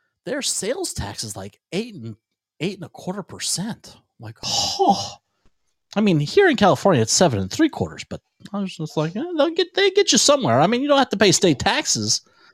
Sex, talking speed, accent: male, 220 wpm, American